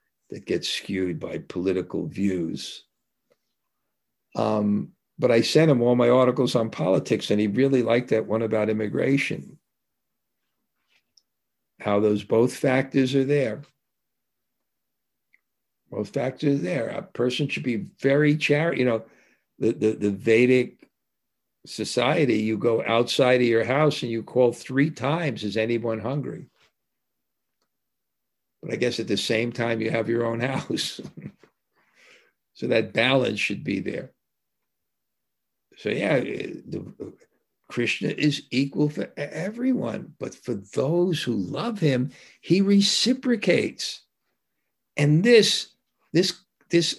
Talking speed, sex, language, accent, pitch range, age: 125 wpm, male, English, American, 115-160 Hz, 60-79